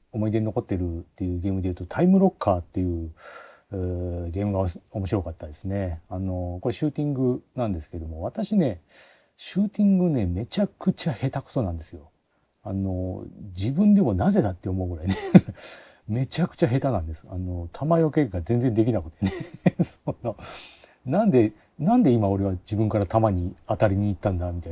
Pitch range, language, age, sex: 90-135 Hz, Japanese, 40-59, male